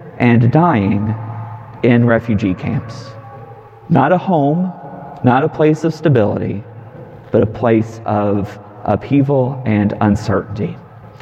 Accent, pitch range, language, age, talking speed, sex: American, 115-135 Hz, English, 40-59, 105 wpm, male